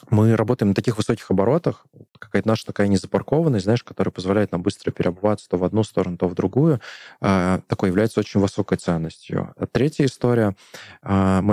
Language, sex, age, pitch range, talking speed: Russian, male, 20-39, 95-110 Hz, 165 wpm